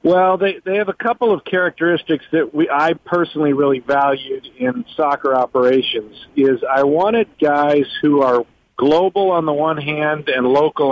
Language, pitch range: English, 135-160 Hz